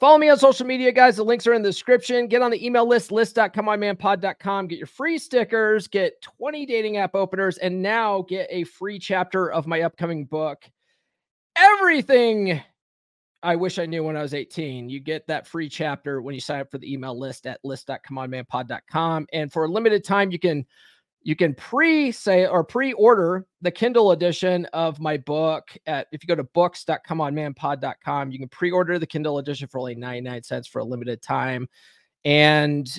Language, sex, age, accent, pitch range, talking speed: English, male, 30-49, American, 145-205 Hz, 180 wpm